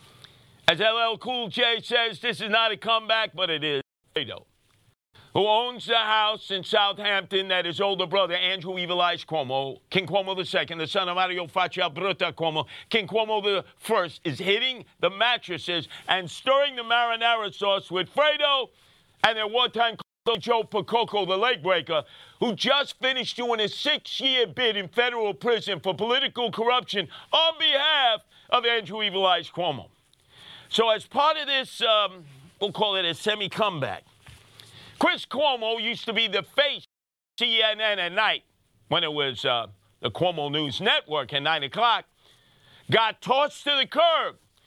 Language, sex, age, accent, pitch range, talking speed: English, male, 50-69, American, 175-235 Hz, 160 wpm